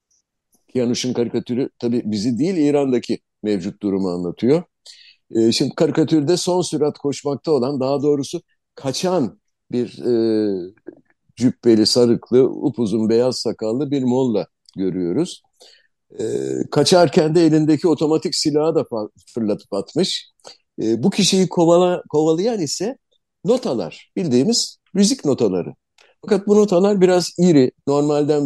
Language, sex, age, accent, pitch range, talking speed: Turkish, male, 60-79, native, 120-175 Hz, 115 wpm